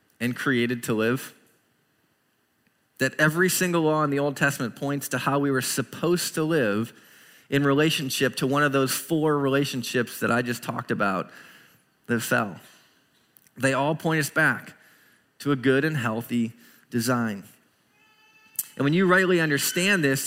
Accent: American